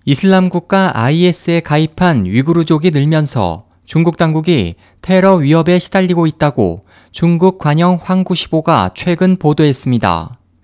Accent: native